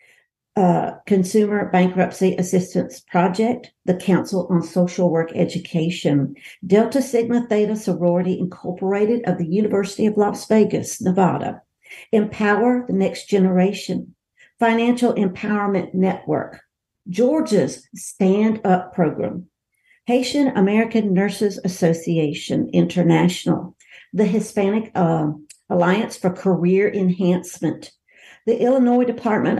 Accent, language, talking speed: American, English, 100 wpm